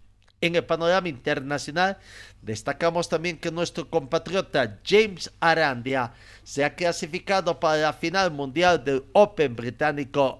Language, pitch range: Spanish, 110-160 Hz